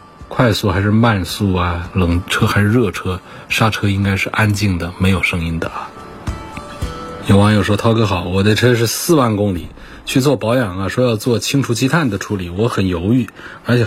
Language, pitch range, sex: Chinese, 95-115 Hz, male